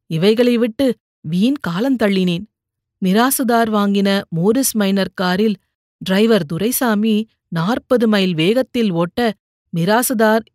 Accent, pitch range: native, 195-240 Hz